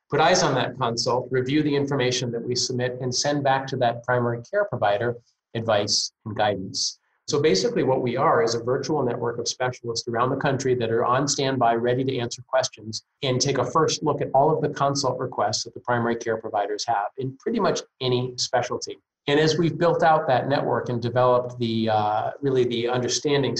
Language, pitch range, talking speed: English, 115-135 Hz, 205 wpm